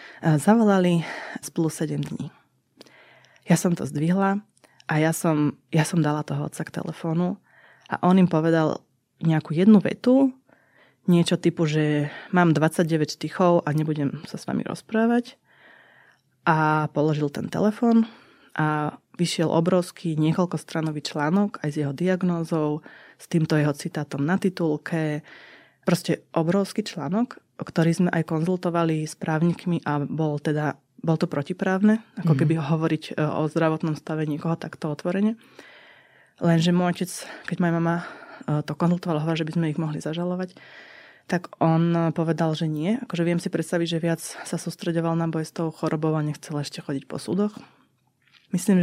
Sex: female